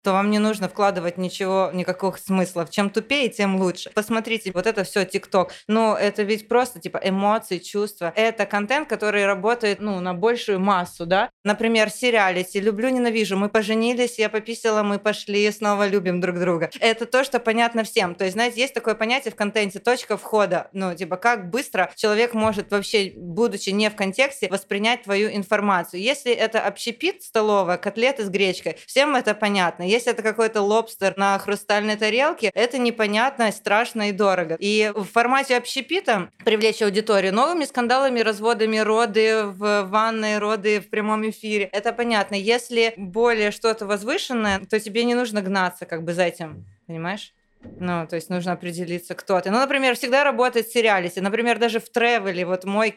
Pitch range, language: 195-230 Hz, Ukrainian